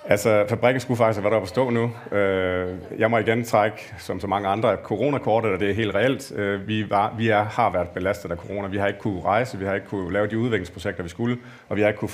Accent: native